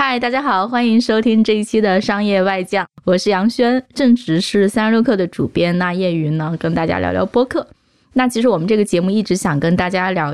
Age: 20-39